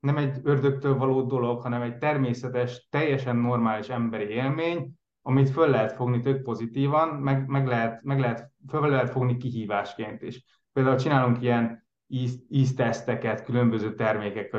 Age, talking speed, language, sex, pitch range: 20-39, 145 wpm, Hungarian, male, 110-130 Hz